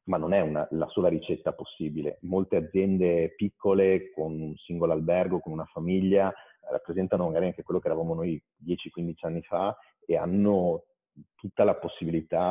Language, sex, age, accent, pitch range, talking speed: Italian, male, 40-59, native, 85-105 Hz, 160 wpm